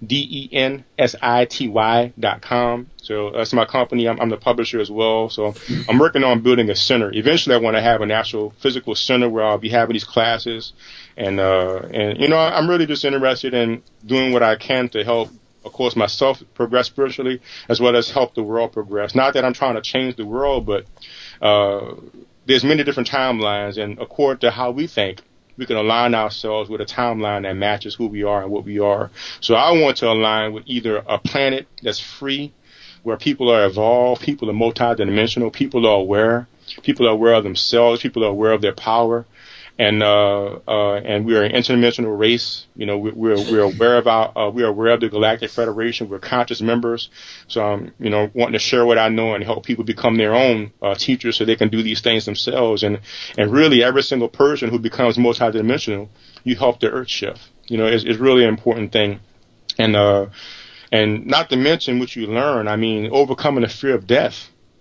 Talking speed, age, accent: 210 wpm, 30-49, American